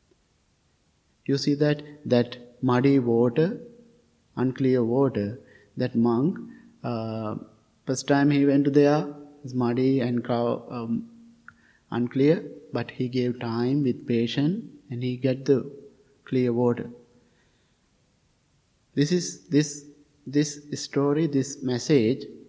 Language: English